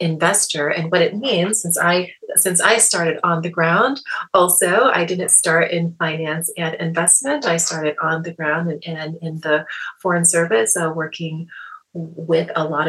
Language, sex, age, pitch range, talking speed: English, female, 30-49, 160-190 Hz, 170 wpm